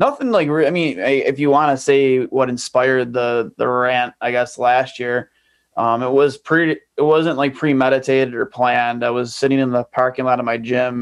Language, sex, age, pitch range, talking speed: English, male, 20-39, 125-145 Hz, 205 wpm